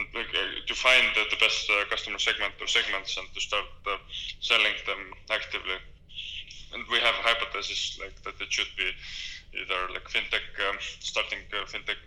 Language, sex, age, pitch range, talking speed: English, male, 20-39, 90-100 Hz, 180 wpm